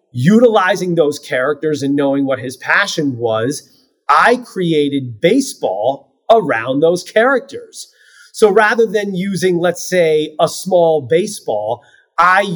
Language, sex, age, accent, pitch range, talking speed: English, male, 30-49, American, 145-205 Hz, 120 wpm